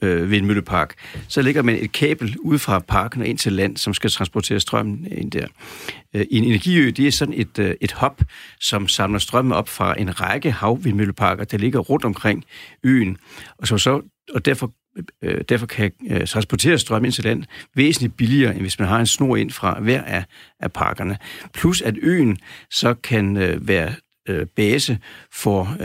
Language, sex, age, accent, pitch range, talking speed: Danish, male, 60-79, native, 100-130 Hz, 165 wpm